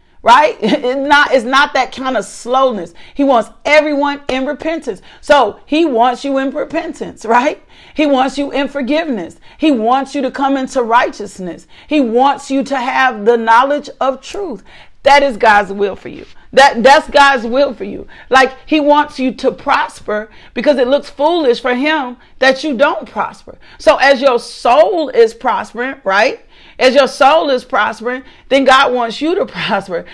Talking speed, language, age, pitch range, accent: 175 wpm, English, 40-59, 245-290 Hz, American